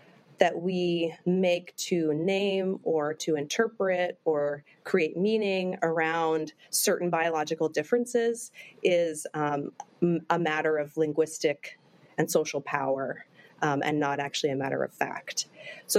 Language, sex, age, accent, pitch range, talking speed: English, female, 30-49, American, 150-195 Hz, 130 wpm